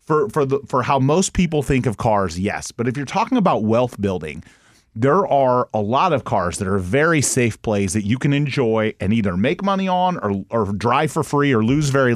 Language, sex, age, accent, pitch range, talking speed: English, male, 30-49, American, 110-145 Hz, 225 wpm